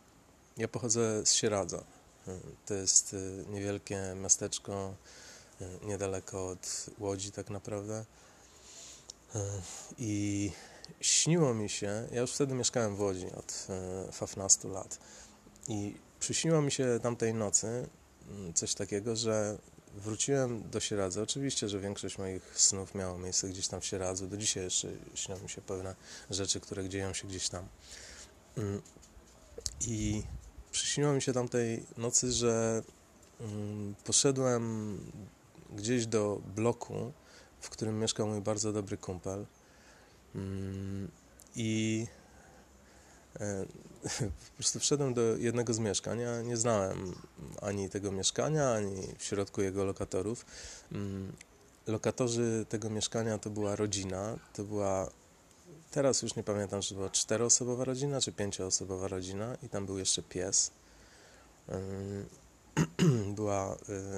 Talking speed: 120 wpm